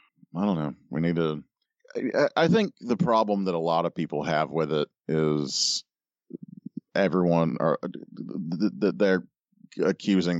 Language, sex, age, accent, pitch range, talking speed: English, male, 40-59, American, 75-85 Hz, 145 wpm